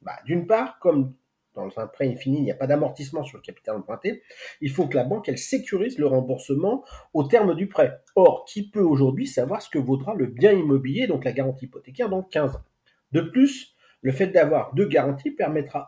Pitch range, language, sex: 135-200 Hz, French, male